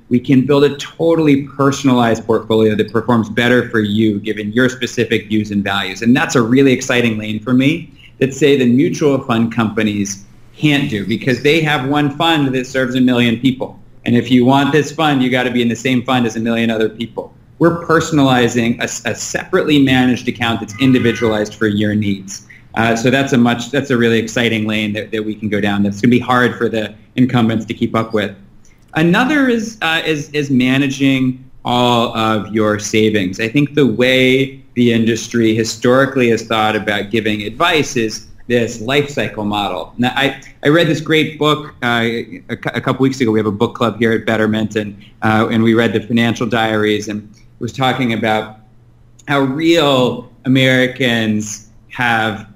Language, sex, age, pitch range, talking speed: English, male, 30-49, 110-135 Hz, 185 wpm